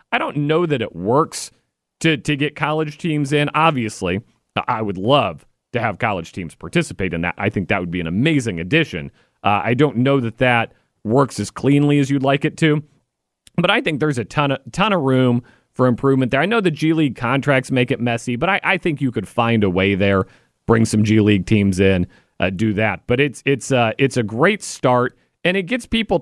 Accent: American